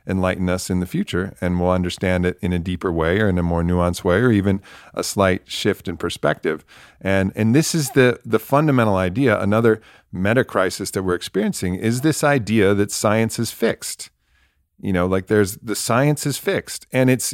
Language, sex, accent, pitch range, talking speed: English, male, American, 90-125 Hz, 195 wpm